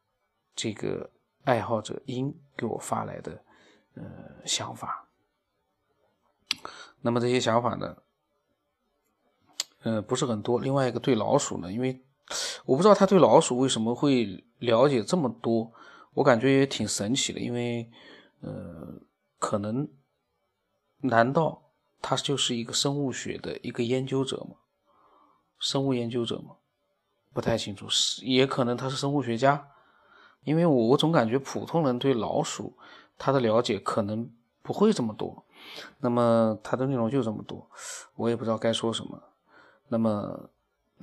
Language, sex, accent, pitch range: Chinese, male, native, 115-135 Hz